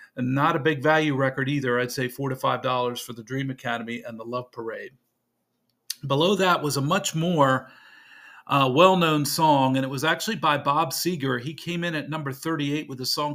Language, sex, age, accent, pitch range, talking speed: English, male, 40-59, American, 130-160 Hz, 200 wpm